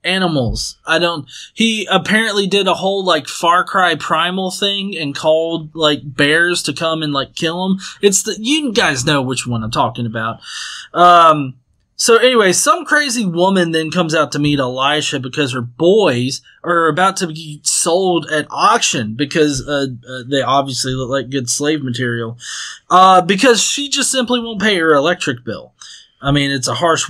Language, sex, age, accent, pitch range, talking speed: English, male, 20-39, American, 145-200 Hz, 175 wpm